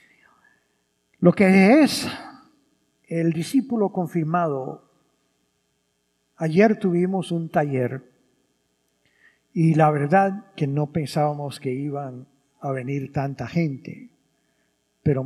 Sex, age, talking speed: male, 50-69, 90 wpm